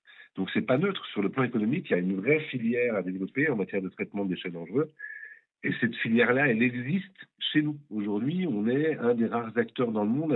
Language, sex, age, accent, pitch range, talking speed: French, male, 50-69, French, 100-135 Hz, 230 wpm